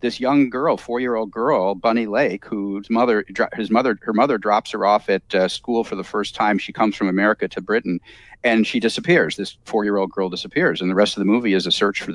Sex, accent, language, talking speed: male, American, English, 225 wpm